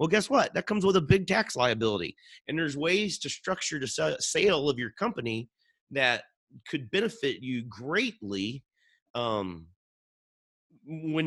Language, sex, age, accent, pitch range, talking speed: English, male, 30-49, American, 120-160 Hz, 145 wpm